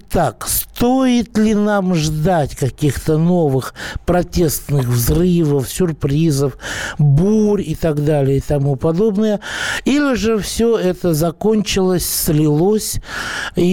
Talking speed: 105 wpm